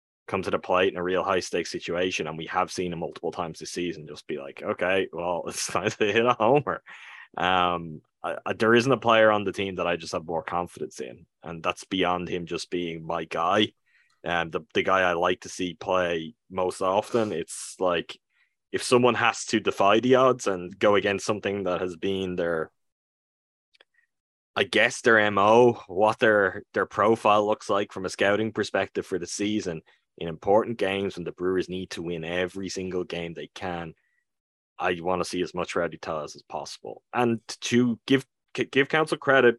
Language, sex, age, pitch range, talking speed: English, male, 10-29, 90-110 Hz, 190 wpm